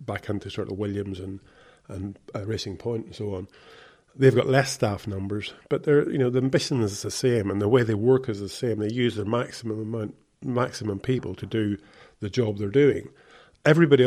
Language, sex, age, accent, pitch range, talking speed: English, male, 40-59, British, 105-125 Hz, 210 wpm